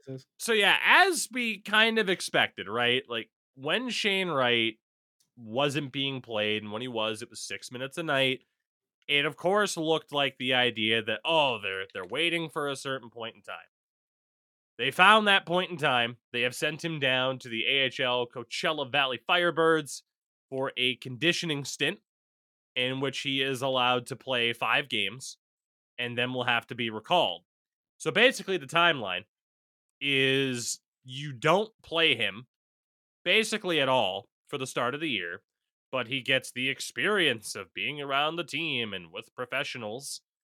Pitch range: 120-160 Hz